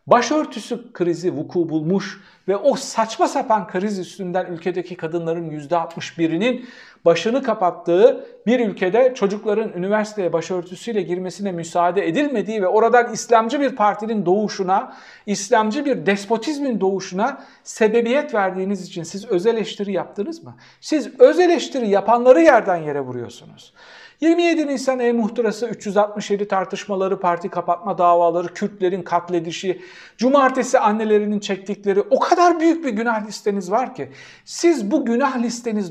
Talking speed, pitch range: 120 wpm, 185-250 Hz